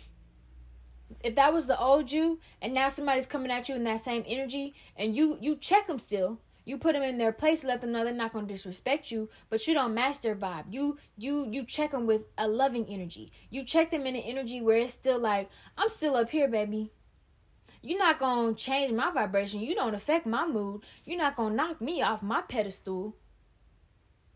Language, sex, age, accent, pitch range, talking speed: English, female, 10-29, American, 210-275 Hz, 215 wpm